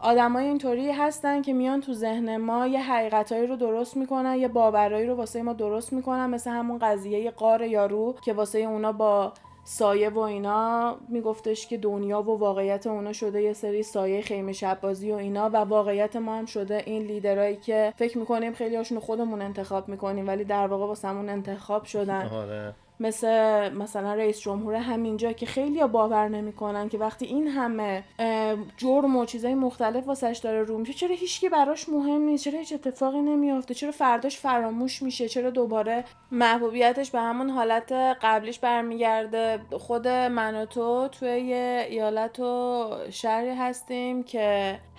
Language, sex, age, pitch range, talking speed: Persian, female, 20-39, 210-245 Hz, 165 wpm